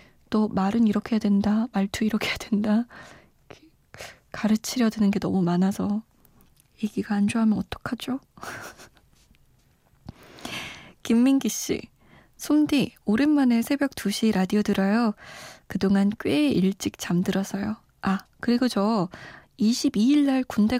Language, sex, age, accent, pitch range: Korean, female, 20-39, native, 200-245 Hz